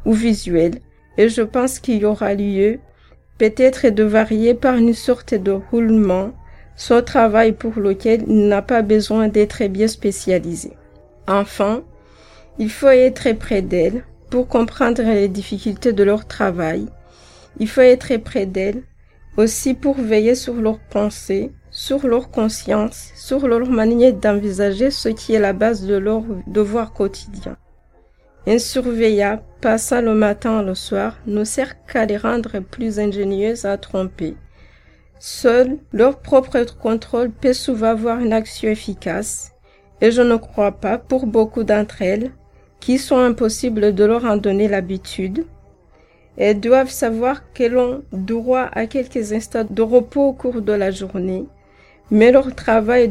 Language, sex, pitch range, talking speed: French, female, 205-240 Hz, 150 wpm